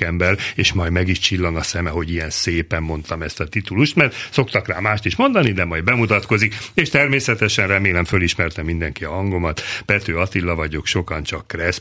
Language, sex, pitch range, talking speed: Hungarian, male, 95-130 Hz, 190 wpm